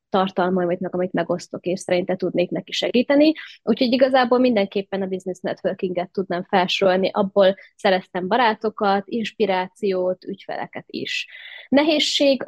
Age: 20-39